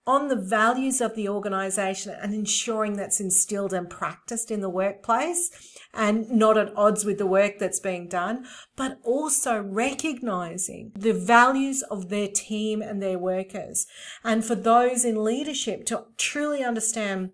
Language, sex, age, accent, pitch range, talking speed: English, female, 40-59, Australian, 200-240 Hz, 150 wpm